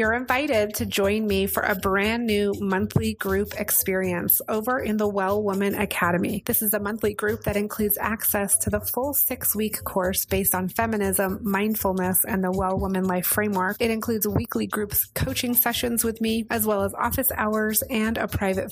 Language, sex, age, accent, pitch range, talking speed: English, female, 30-49, American, 190-230 Hz, 185 wpm